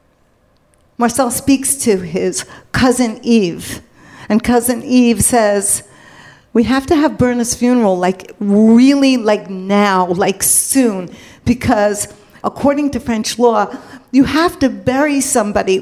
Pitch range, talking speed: 205-250 Hz, 120 wpm